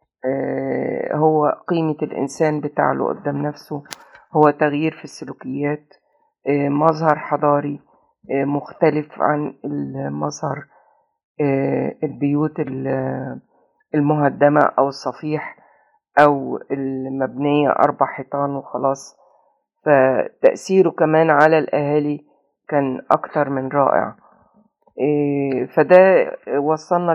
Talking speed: 75 wpm